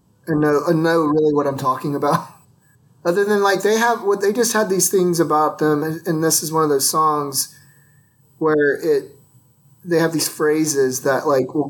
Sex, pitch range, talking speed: male, 140-160 Hz, 195 wpm